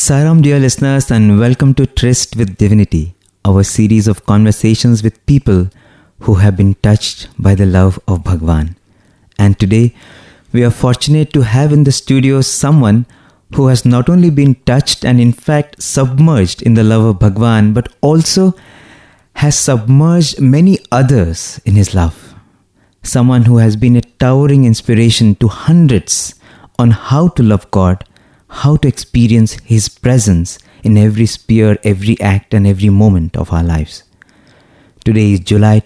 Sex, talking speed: male, 155 wpm